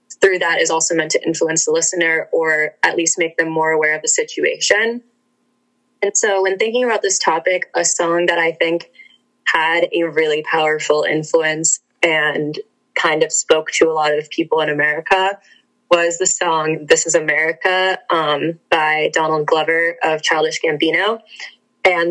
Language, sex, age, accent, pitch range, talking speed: English, female, 20-39, American, 165-190 Hz, 165 wpm